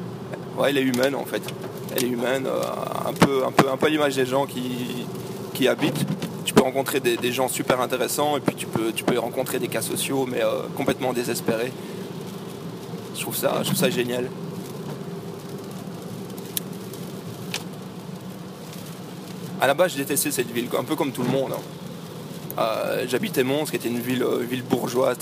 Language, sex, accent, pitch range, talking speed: French, male, French, 130-180 Hz, 180 wpm